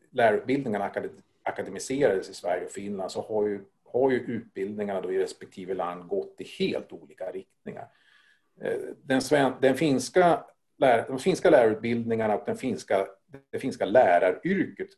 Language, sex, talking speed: Swedish, male, 105 wpm